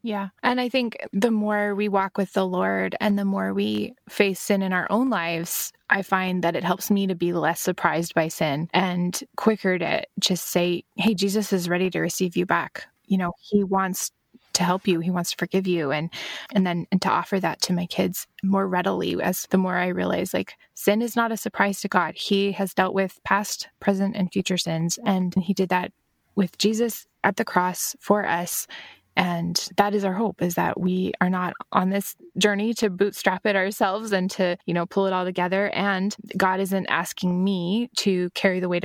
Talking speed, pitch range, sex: 210 wpm, 180-200 Hz, female